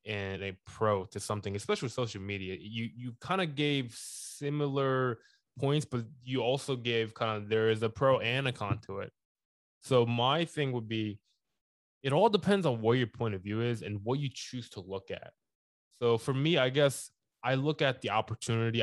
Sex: male